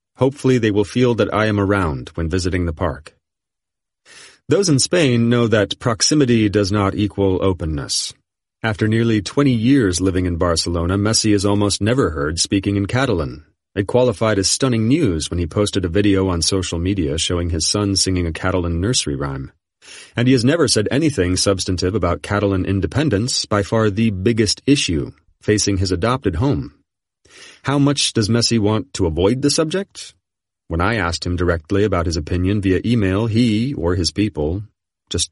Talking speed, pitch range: 170 wpm, 90-115 Hz